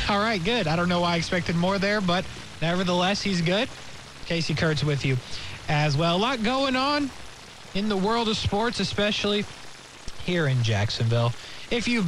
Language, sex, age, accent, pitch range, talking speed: English, male, 20-39, American, 145-210 Hz, 180 wpm